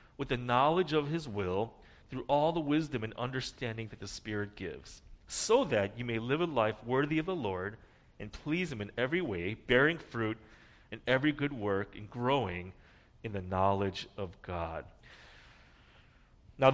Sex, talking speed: male, 170 wpm